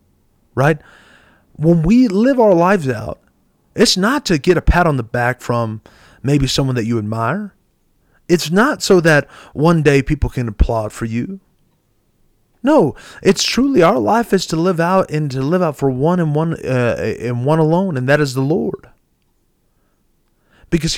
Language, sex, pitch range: English, male, 120-175 Hz